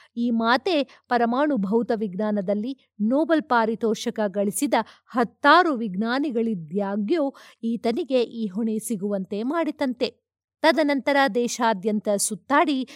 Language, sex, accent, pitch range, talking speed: Kannada, female, native, 215-285 Hz, 85 wpm